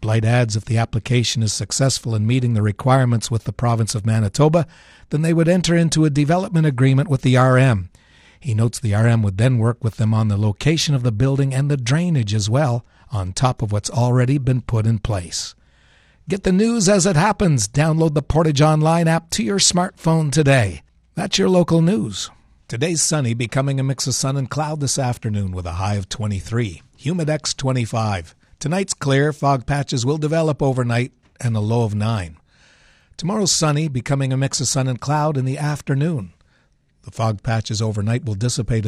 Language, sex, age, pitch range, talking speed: English, male, 60-79, 115-150 Hz, 190 wpm